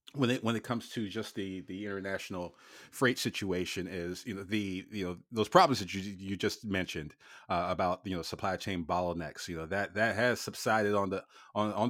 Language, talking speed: English, 210 wpm